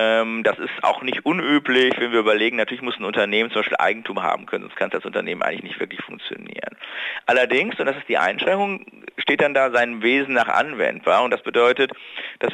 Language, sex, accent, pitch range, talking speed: German, male, German, 110-130 Hz, 200 wpm